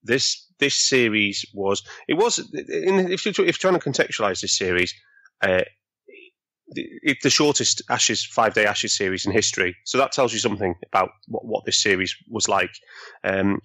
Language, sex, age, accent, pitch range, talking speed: English, male, 30-49, British, 100-140 Hz, 170 wpm